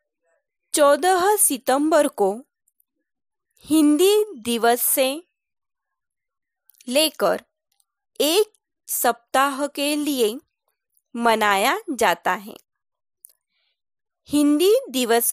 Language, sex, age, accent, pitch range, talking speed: Marathi, female, 20-39, native, 245-360 Hz, 65 wpm